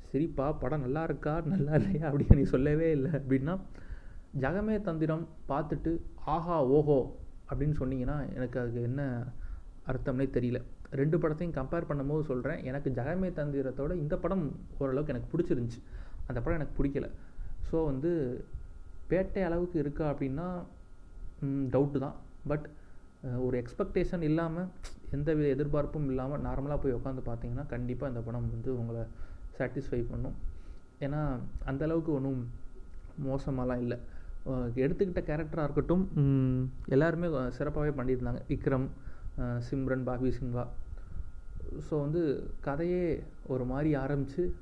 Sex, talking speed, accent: male, 115 wpm, native